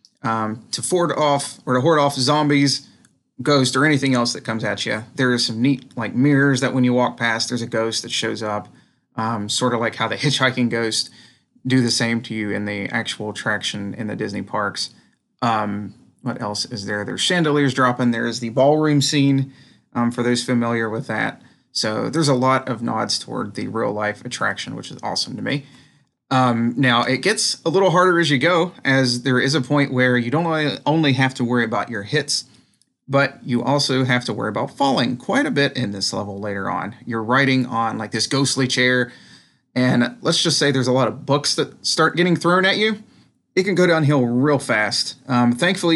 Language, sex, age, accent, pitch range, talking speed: English, male, 30-49, American, 115-140 Hz, 210 wpm